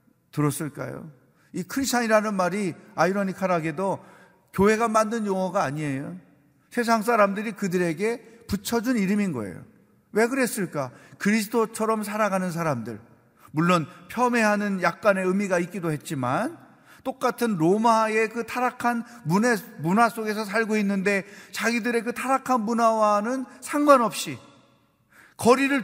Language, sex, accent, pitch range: Korean, male, native, 170-235 Hz